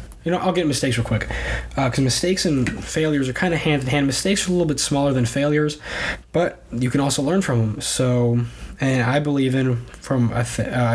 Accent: American